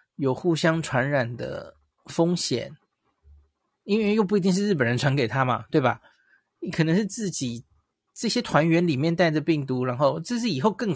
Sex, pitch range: male, 130-175 Hz